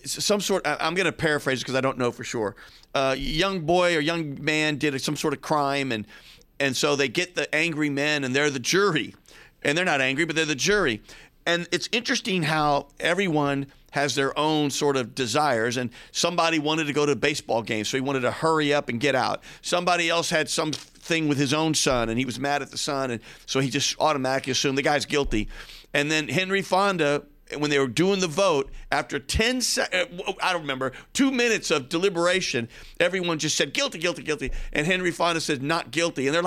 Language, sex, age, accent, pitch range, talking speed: English, male, 40-59, American, 140-180 Hz, 215 wpm